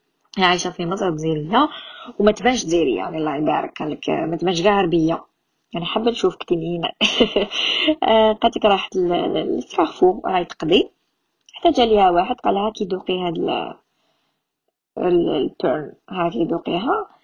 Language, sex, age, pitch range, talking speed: Arabic, female, 20-39, 170-235 Hz, 125 wpm